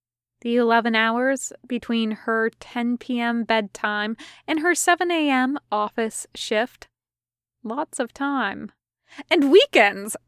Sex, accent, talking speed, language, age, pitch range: female, American, 110 wpm, English, 20-39, 215-285 Hz